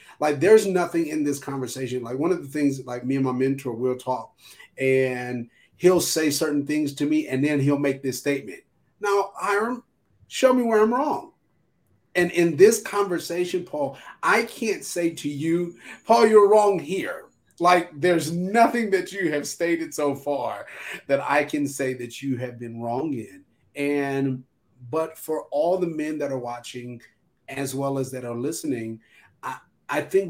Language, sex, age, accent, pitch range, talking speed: English, male, 30-49, American, 135-175 Hz, 175 wpm